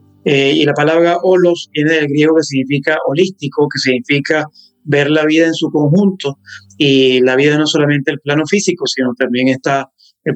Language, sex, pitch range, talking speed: Spanish, male, 135-170 Hz, 180 wpm